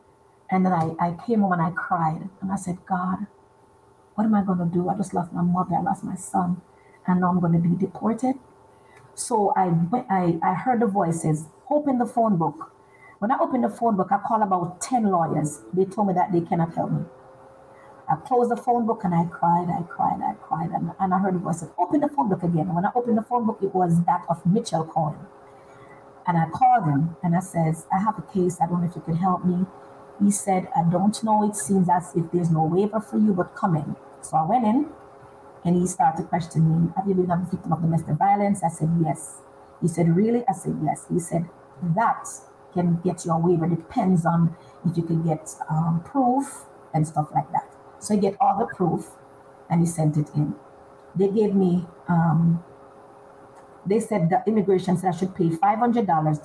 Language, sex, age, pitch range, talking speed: English, female, 30-49, 165-205 Hz, 220 wpm